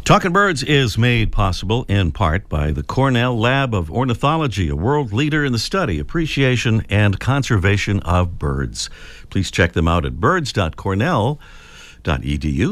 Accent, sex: American, male